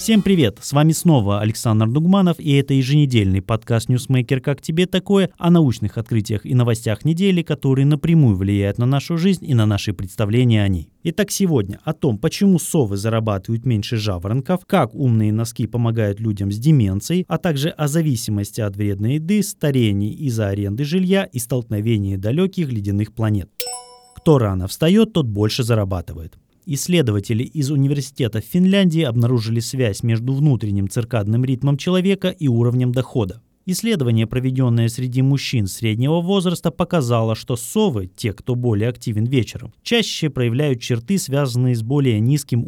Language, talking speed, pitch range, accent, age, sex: Russian, 150 wpm, 110-160 Hz, native, 20-39, male